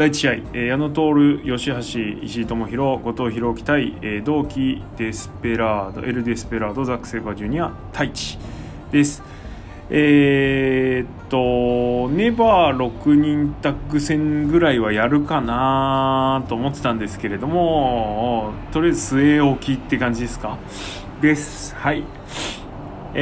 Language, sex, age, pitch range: Japanese, male, 20-39, 110-145 Hz